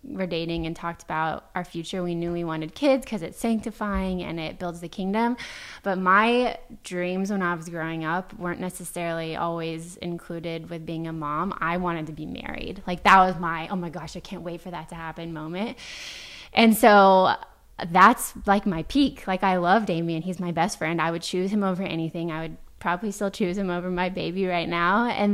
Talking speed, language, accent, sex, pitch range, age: 210 wpm, English, American, female, 170-200 Hz, 20-39